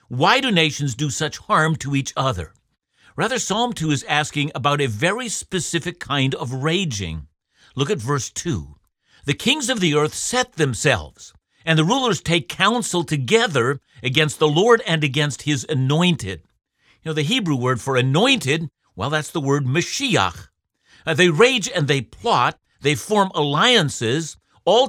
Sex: male